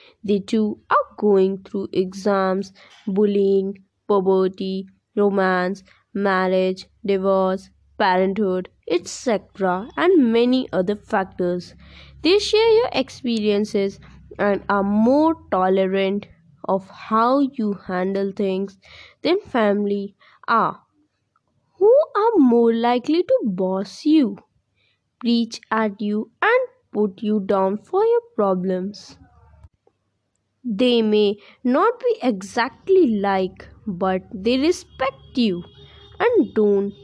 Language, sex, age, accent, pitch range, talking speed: English, female, 20-39, Indian, 190-250 Hz, 100 wpm